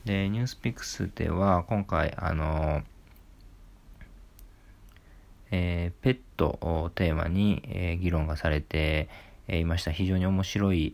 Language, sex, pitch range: Japanese, male, 80-95 Hz